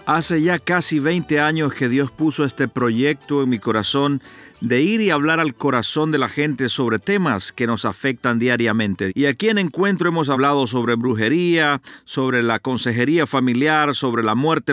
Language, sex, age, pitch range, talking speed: Spanish, male, 50-69, 125-165 Hz, 175 wpm